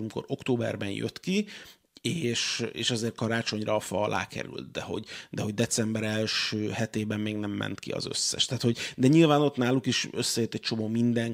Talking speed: 190 wpm